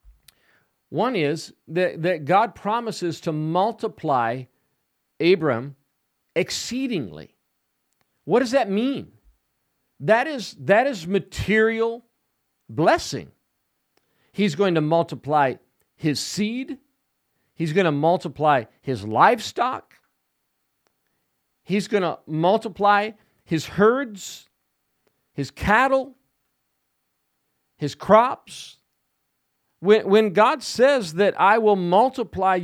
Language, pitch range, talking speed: English, 145-215 Hz, 90 wpm